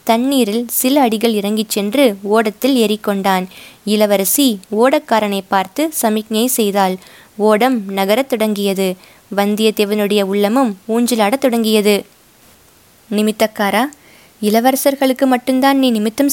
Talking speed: 90 wpm